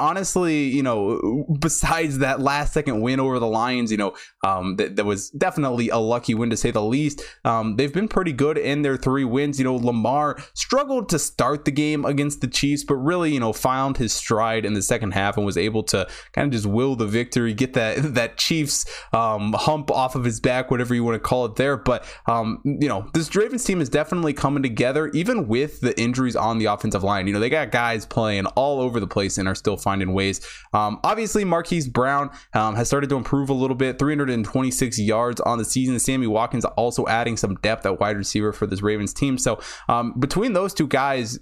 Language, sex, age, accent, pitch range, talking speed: English, male, 20-39, American, 115-145 Hz, 220 wpm